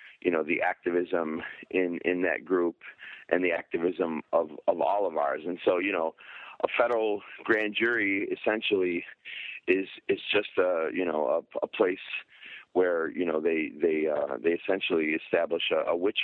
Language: English